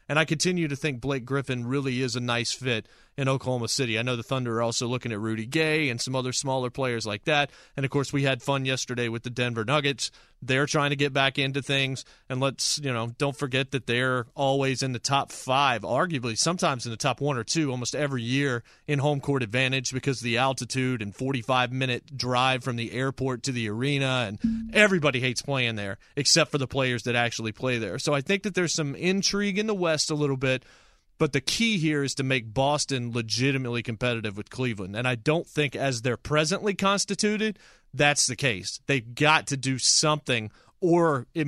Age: 30-49